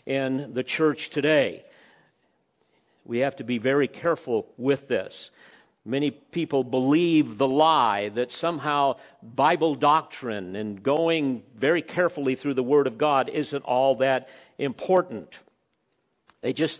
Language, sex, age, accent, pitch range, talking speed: English, male, 50-69, American, 140-185 Hz, 130 wpm